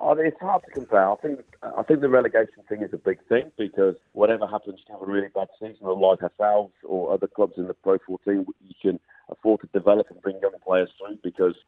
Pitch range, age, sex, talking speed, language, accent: 90-150 Hz, 40-59, male, 225 wpm, English, British